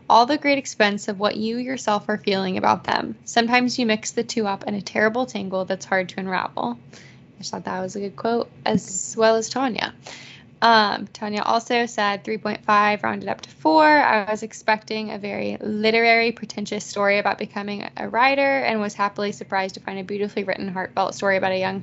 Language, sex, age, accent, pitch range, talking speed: English, female, 20-39, American, 195-230 Hz, 200 wpm